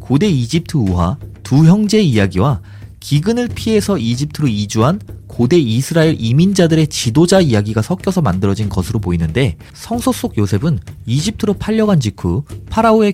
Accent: native